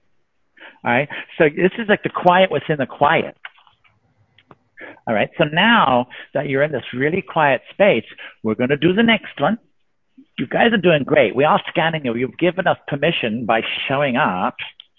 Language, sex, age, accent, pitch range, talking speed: English, male, 60-79, American, 140-195 Hz, 180 wpm